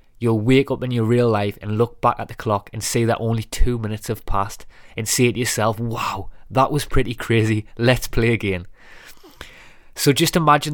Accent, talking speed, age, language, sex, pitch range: British, 200 wpm, 20-39, English, male, 110-130 Hz